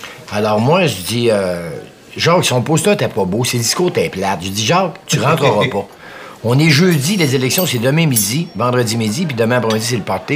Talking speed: 220 wpm